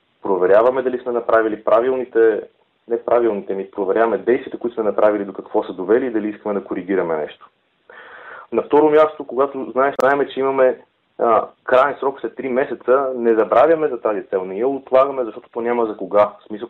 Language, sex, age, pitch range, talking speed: Bulgarian, male, 30-49, 105-130 Hz, 180 wpm